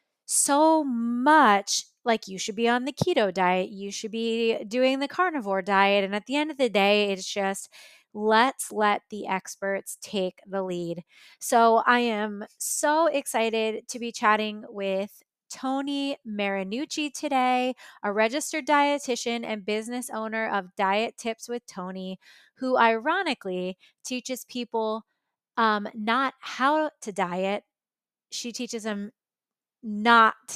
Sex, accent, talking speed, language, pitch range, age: female, American, 135 wpm, English, 205-255 Hz, 20-39